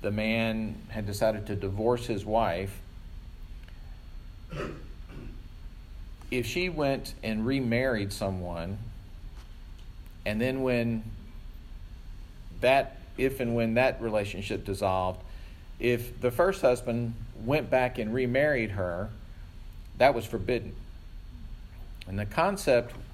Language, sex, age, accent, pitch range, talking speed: English, male, 40-59, American, 95-115 Hz, 100 wpm